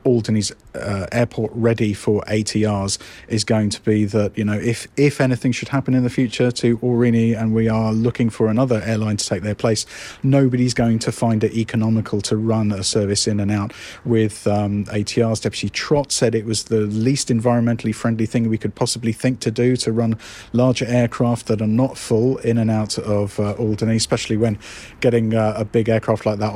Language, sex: English, male